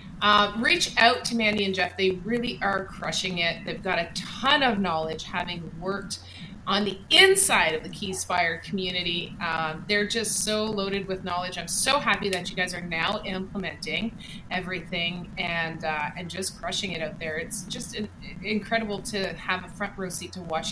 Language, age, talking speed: English, 30-49, 180 wpm